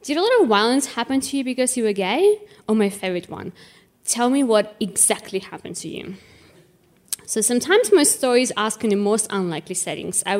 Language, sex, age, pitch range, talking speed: English, female, 20-39, 190-255 Hz, 210 wpm